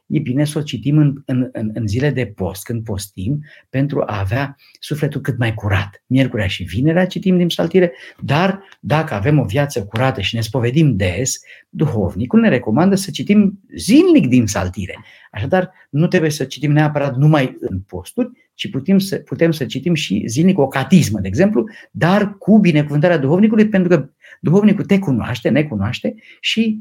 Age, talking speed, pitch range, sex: 50-69, 170 wpm, 110-165 Hz, male